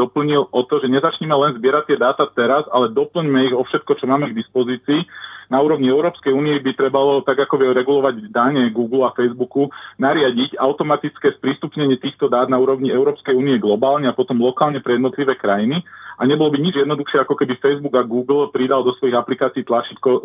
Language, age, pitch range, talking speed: Slovak, 40-59, 130-150 Hz, 190 wpm